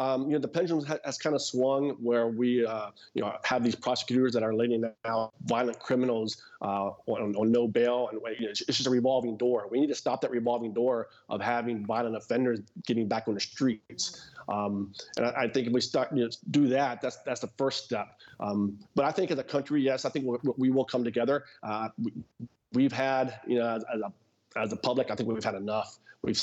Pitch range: 110-130 Hz